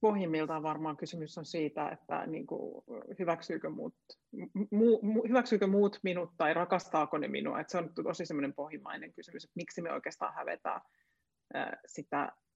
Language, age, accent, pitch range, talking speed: Finnish, 30-49, native, 155-185 Hz, 135 wpm